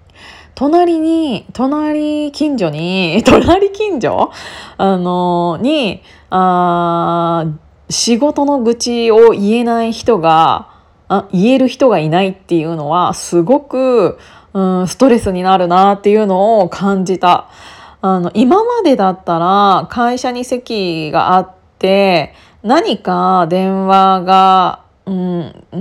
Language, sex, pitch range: Japanese, female, 180-240 Hz